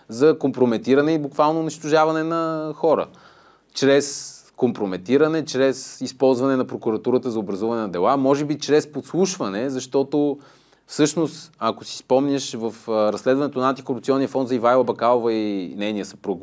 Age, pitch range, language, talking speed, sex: 20-39, 120-150 Hz, Bulgarian, 135 wpm, male